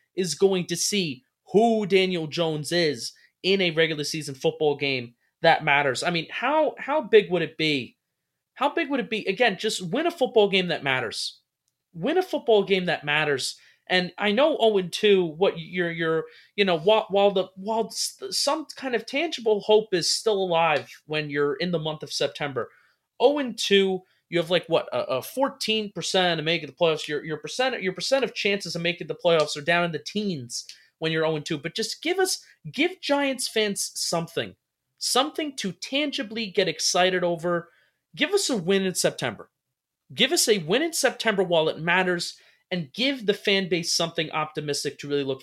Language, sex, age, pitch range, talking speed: English, male, 30-49, 160-225 Hz, 190 wpm